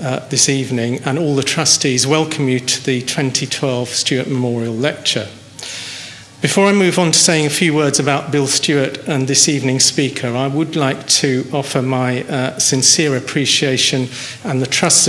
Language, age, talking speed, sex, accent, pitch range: English, 50-69, 170 wpm, male, British, 130-150 Hz